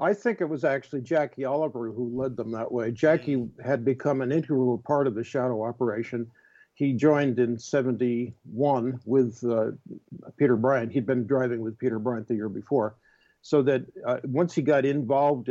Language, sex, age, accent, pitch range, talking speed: English, male, 60-79, American, 120-140 Hz, 180 wpm